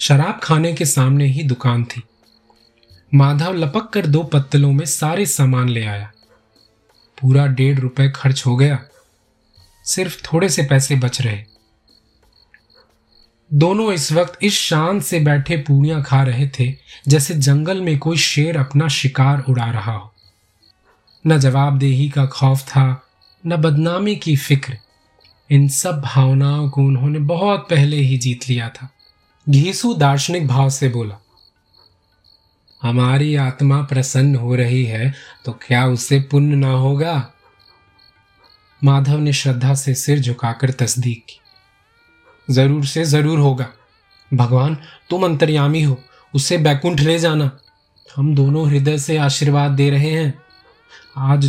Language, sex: Hindi, male